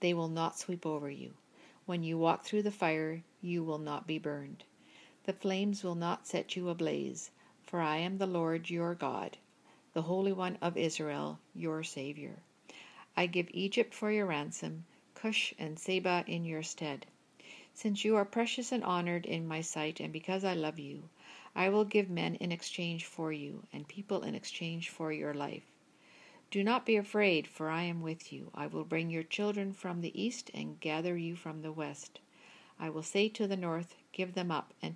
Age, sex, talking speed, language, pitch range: 50-69, female, 190 wpm, English, 155-195 Hz